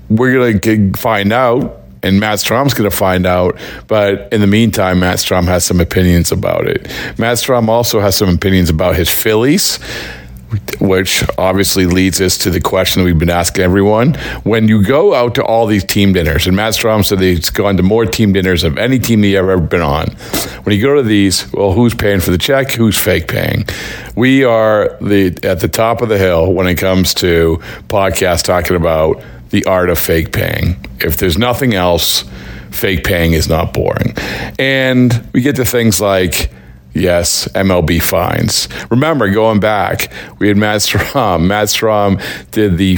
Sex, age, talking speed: male, 50-69, 185 wpm